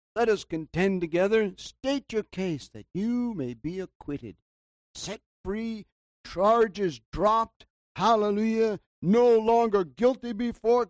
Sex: male